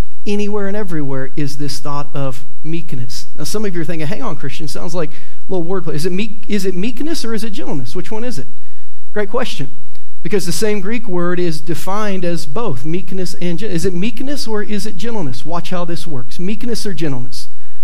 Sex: male